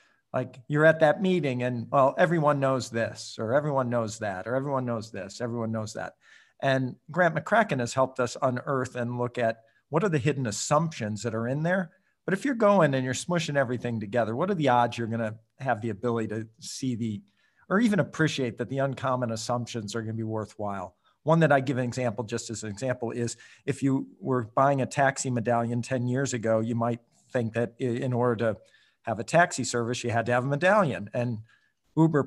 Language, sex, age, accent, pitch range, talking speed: English, male, 50-69, American, 115-145 Hz, 210 wpm